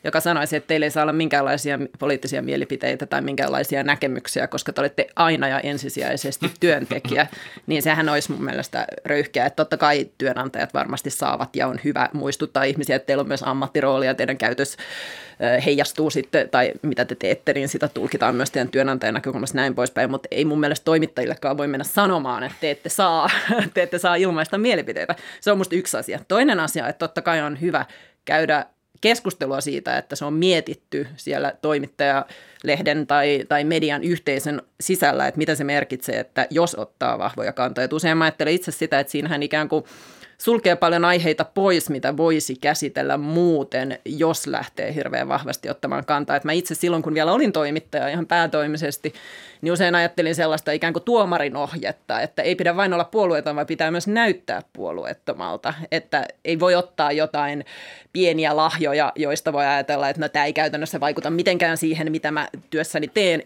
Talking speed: 175 wpm